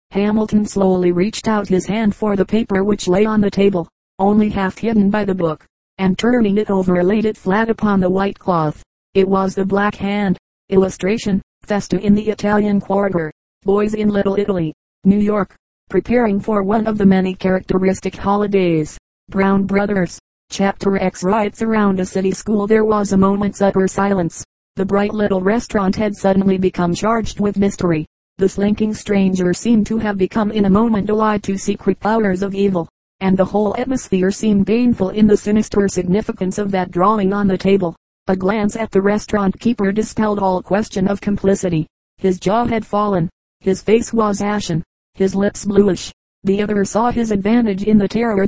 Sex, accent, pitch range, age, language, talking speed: female, American, 190-210 Hz, 40-59, English, 175 wpm